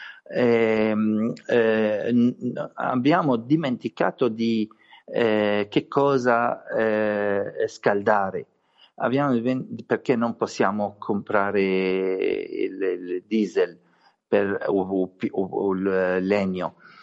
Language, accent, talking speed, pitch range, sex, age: Italian, native, 90 wpm, 105-135 Hz, male, 50-69